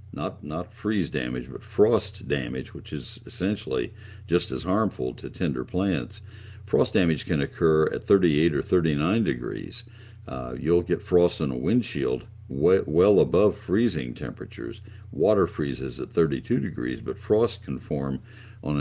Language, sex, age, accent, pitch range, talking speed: English, male, 60-79, American, 70-105 Hz, 150 wpm